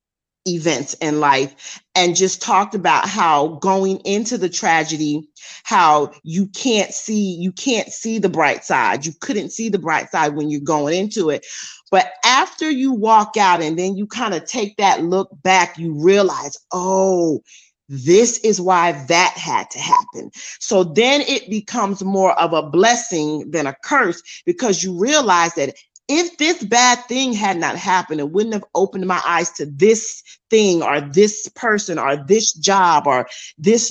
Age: 40-59